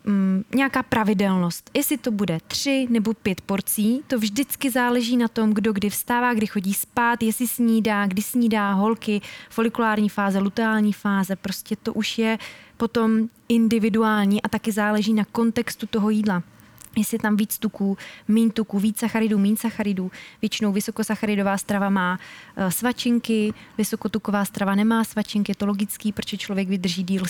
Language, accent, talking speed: Czech, native, 145 wpm